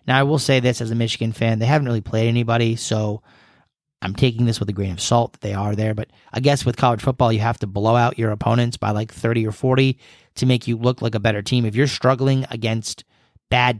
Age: 30-49